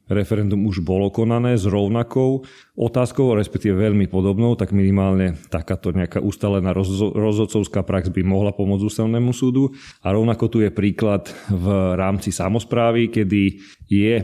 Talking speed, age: 135 wpm, 40-59